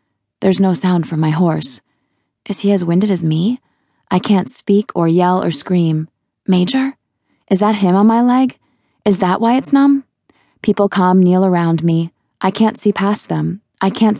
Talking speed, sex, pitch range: 180 wpm, female, 165-205 Hz